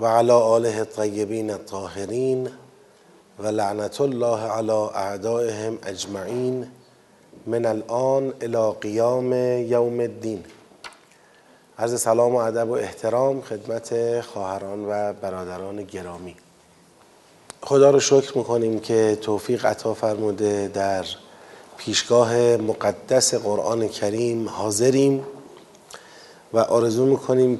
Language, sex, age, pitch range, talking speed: Persian, male, 30-49, 105-125 Hz, 100 wpm